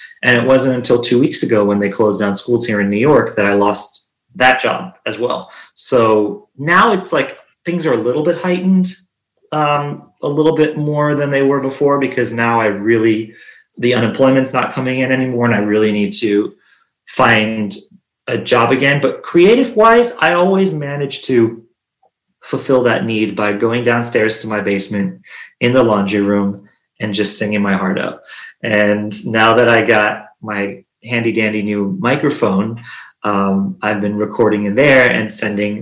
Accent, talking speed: American, 175 wpm